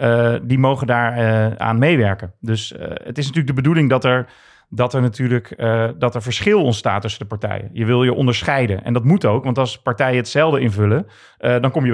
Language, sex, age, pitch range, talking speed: Dutch, male, 40-59, 115-145 Hz, 220 wpm